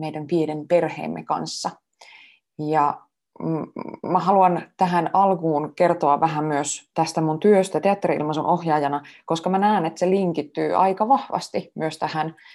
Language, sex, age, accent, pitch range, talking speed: Finnish, female, 20-39, native, 150-180 Hz, 130 wpm